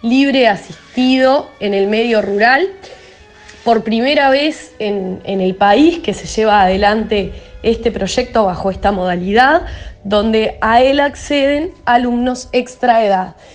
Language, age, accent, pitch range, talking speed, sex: Spanish, 20-39, Argentinian, 200-265 Hz, 125 wpm, female